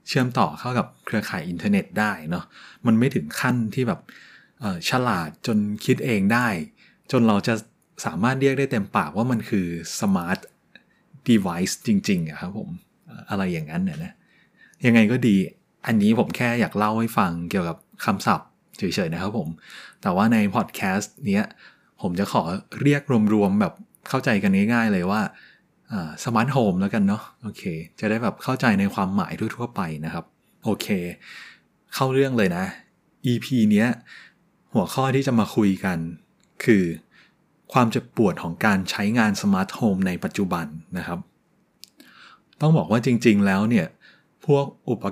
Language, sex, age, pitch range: Thai, male, 20-39, 105-175 Hz